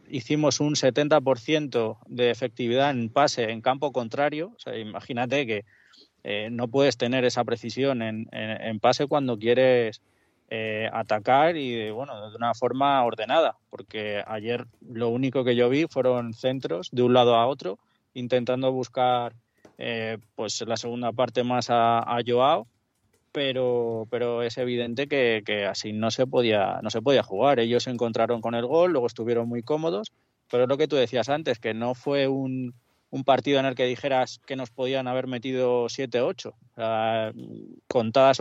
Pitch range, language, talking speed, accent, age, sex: 115-135 Hz, Spanish, 170 wpm, Spanish, 20-39, male